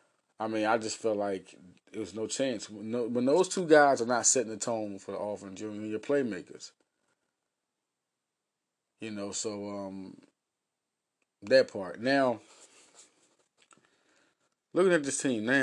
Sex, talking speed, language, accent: male, 140 wpm, English, American